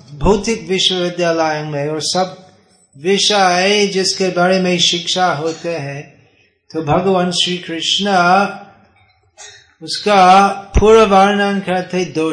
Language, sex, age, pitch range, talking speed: Hindi, male, 30-49, 135-185 Hz, 100 wpm